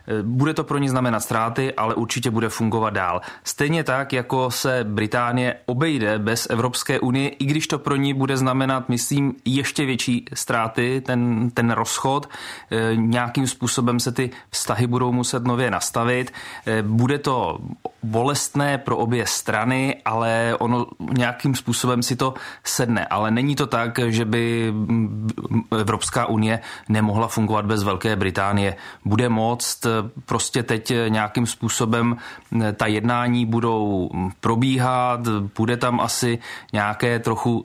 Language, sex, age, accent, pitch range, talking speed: Czech, male, 30-49, native, 110-125 Hz, 135 wpm